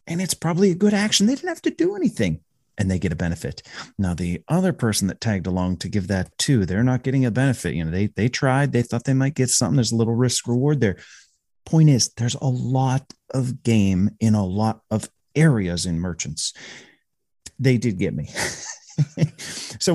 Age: 30-49